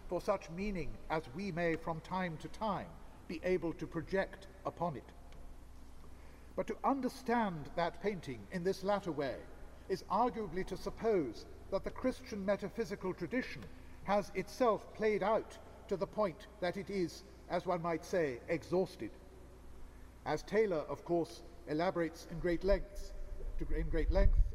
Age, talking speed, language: 50-69, 145 wpm, English